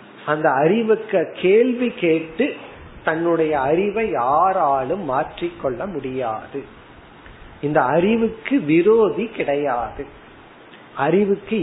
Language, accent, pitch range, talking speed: Tamil, native, 150-200 Hz, 70 wpm